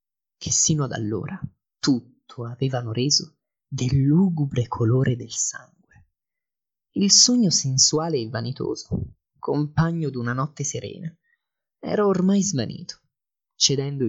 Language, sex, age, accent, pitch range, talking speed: Italian, male, 20-39, native, 120-170 Hz, 105 wpm